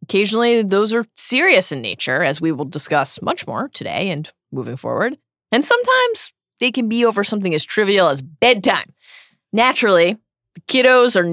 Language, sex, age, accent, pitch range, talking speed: English, female, 20-39, American, 170-250 Hz, 165 wpm